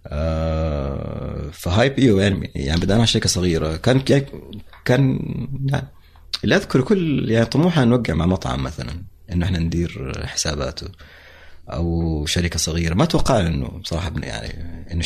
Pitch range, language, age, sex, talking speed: 80-105 Hz, Arabic, 30-49, male, 140 wpm